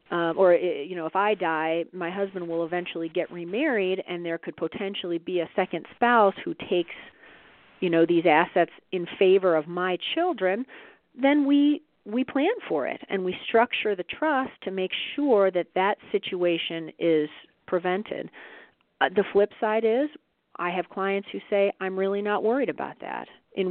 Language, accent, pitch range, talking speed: English, American, 170-225 Hz, 170 wpm